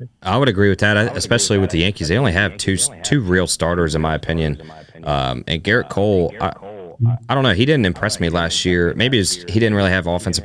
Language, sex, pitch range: English, male, 90-105 Hz